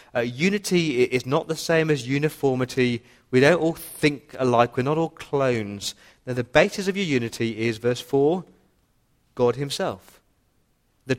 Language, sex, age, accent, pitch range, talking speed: English, male, 40-59, British, 115-150 Hz, 150 wpm